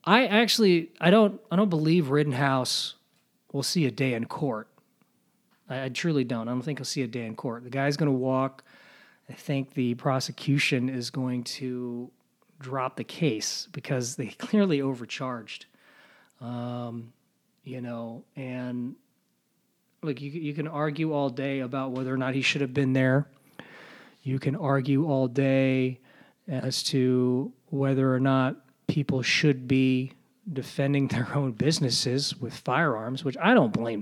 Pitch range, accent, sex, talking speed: 130-155 Hz, American, male, 155 wpm